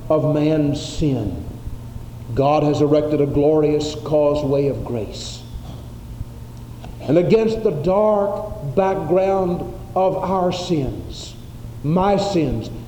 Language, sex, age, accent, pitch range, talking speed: English, male, 50-69, American, 120-185 Hz, 100 wpm